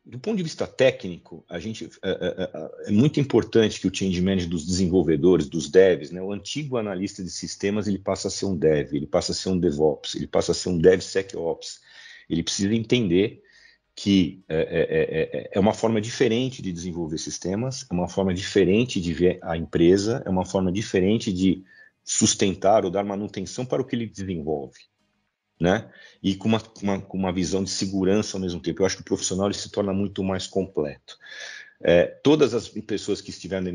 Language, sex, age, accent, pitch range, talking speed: Portuguese, male, 50-69, Brazilian, 90-110 Hz, 190 wpm